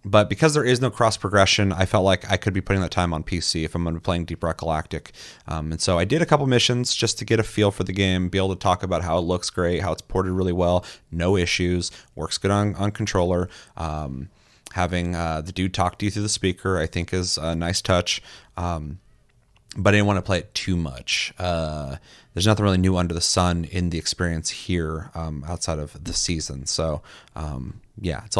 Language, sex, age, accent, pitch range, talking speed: English, male, 30-49, American, 85-105 Hz, 235 wpm